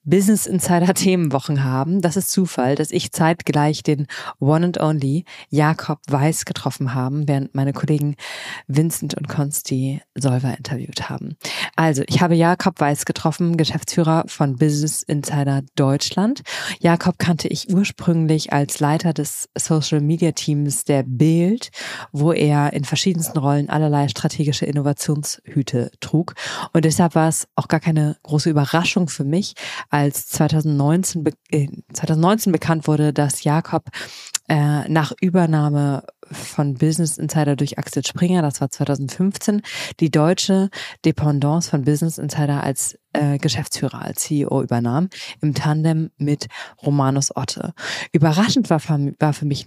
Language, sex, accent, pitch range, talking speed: German, female, German, 145-165 Hz, 135 wpm